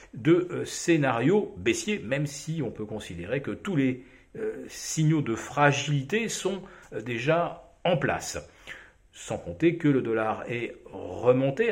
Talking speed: 135 wpm